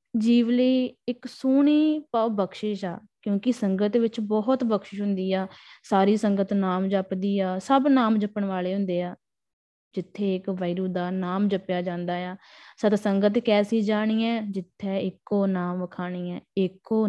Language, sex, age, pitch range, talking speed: Punjabi, female, 20-39, 190-225 Hz, 155 wpm